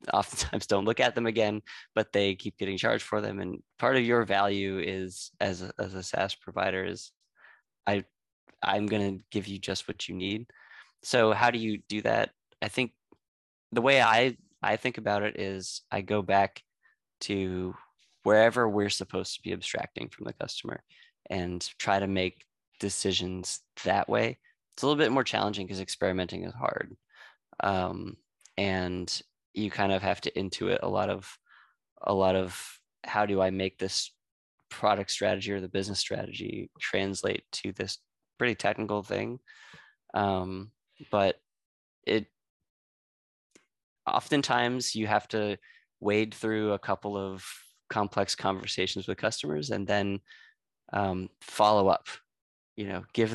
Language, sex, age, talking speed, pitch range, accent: English, male, 20-39, 155 wpm, 95-105 Hz, American